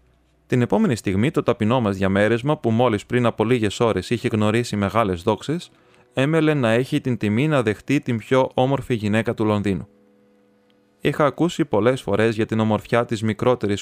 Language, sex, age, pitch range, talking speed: Greek, male, 20-39, 100-125 Hz, 170 wpm